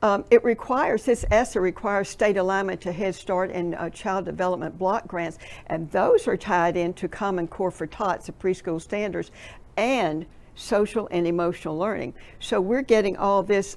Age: 60-79